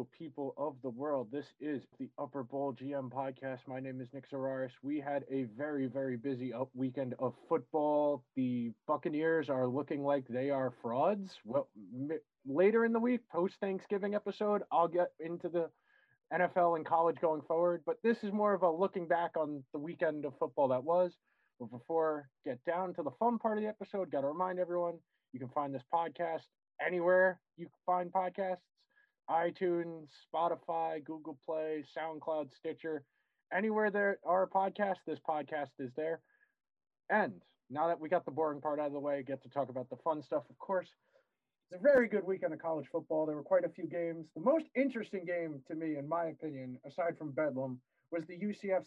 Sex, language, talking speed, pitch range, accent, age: male, English, 190 wpm, 140-180 Hz, American, 20-39